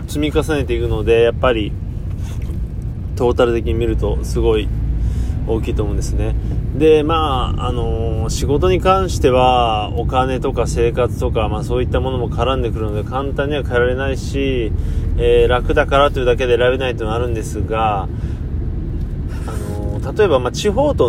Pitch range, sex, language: 95-125 Hz, male, Japanese